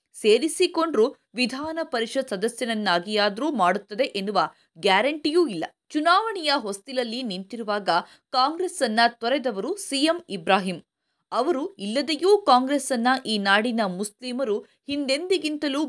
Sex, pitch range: female, 205-285 Hz